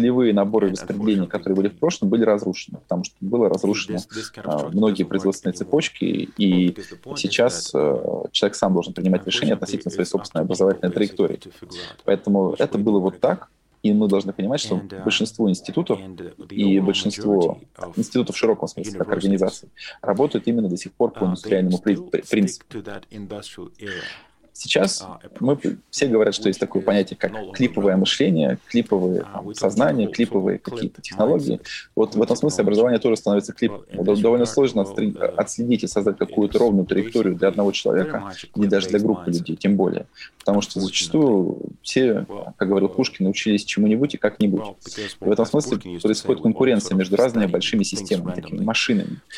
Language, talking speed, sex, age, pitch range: Russian, 145 wpm, male, 20-39, 95-105 Hz